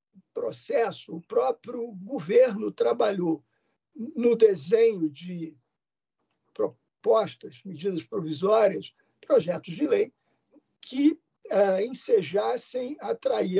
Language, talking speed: Portuguese, 75 wpm